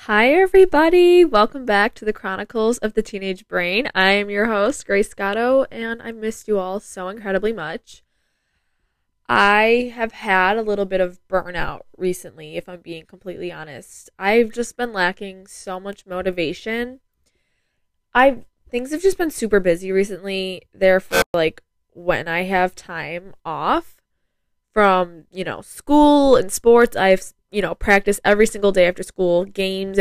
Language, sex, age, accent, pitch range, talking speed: English, female, 10-29, American, 180-215 Hz, 155 wpm